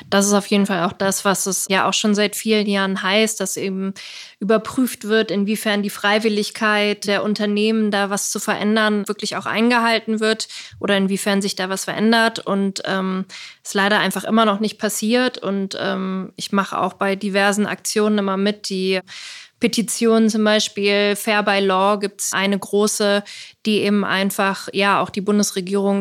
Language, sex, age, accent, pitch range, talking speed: German, female, 20-39, German, 190-210 Hz, 175 wpm